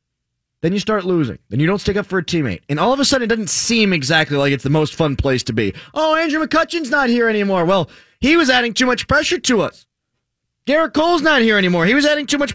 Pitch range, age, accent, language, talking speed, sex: 135-220 Hz, 30-49, American, English, 260 wpm, male